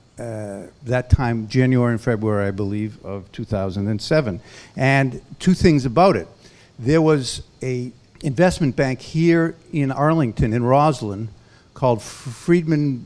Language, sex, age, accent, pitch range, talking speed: English, male, 50-69, American, 110-135 Hz, 130 wpm